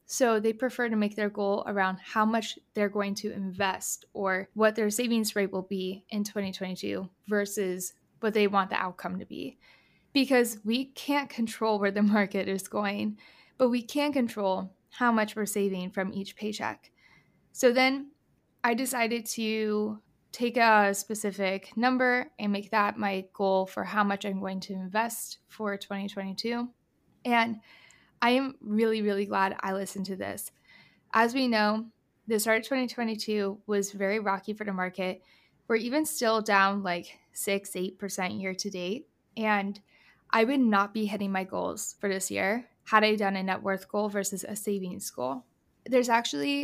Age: 20-39